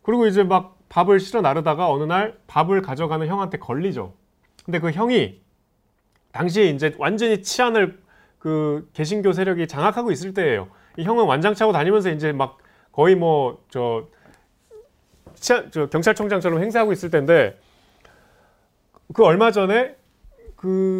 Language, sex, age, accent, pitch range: Korean, male, 30-49, native, 115-195 Hz